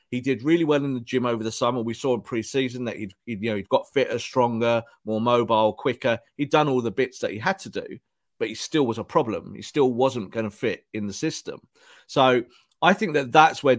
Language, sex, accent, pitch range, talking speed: English, male, British, 110-145 Hz, 235 wpm